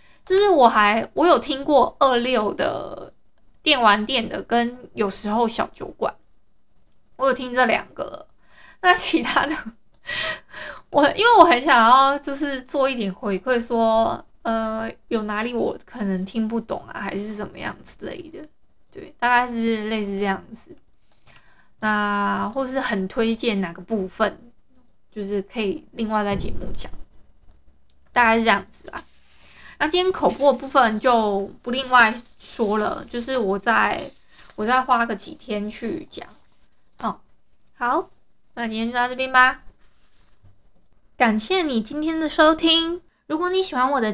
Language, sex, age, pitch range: Chinese, female, 20-39, 215-270 Hz